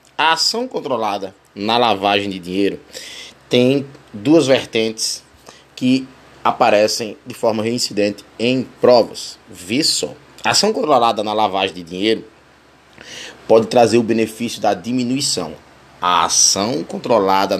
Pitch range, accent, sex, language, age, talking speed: 100-130 Hz, Brazilian, male, Portuguese, 20-39, 120 wpm